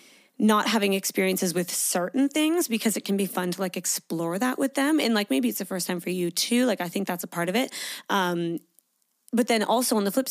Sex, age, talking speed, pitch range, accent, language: female, 20-39, 245 wpm, 185-245 Hz, American, English